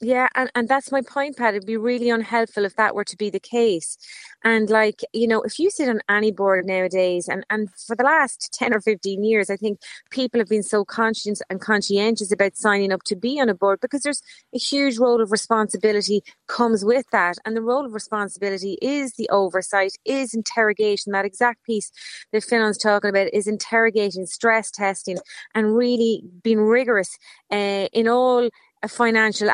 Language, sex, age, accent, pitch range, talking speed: English, female, 30-49, Irish, 200-235 Hz, 190 wpm